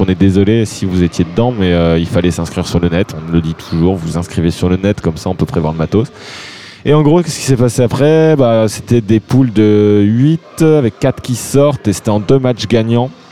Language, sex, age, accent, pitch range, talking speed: French, male, 20-39, French, 100-130 Hz, 250 wpm